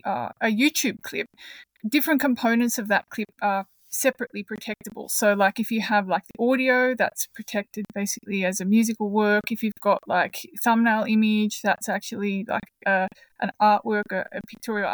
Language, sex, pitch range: English, female, 205-250 Hz